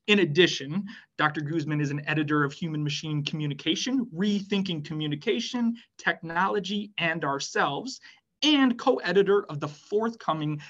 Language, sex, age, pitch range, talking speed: English, male, 30-49, 150-205 Hz, 120 wpm